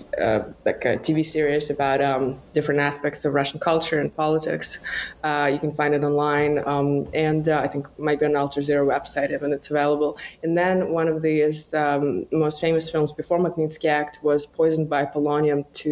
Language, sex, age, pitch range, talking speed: English, female, 20-39, 145-155 Hz, 190 wpm